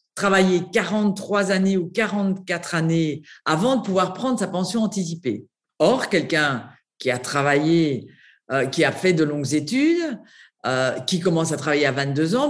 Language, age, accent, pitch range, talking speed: Dutch, 50-69, French, 155-230 Hz, 160 wpm